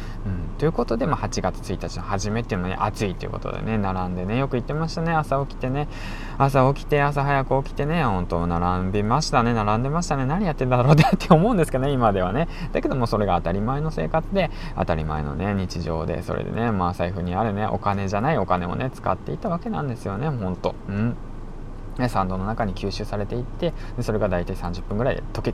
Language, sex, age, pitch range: Japanese, male, 20-39, 100-150 Hz